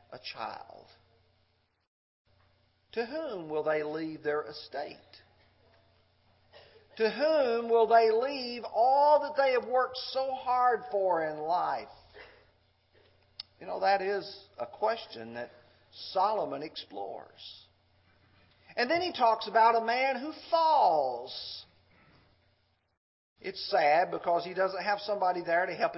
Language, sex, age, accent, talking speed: English, male, 50-69, American, 120 wpm